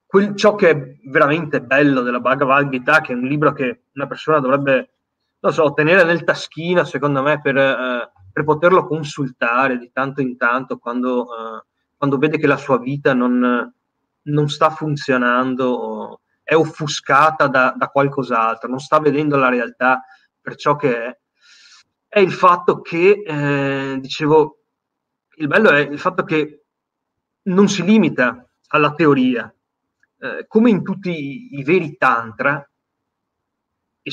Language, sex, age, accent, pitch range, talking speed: Italian, male, 30-49, native, 130-155 Hz, 145 wpm